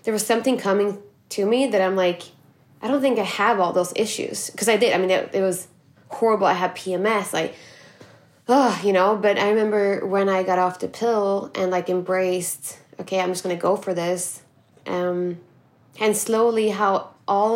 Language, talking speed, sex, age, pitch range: English, 200 wpm, female, 20-39, 180-205 Hz